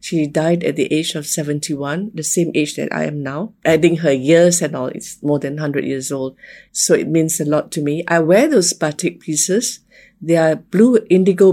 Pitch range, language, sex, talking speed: 145-180 Hz, English, female, 215 wpm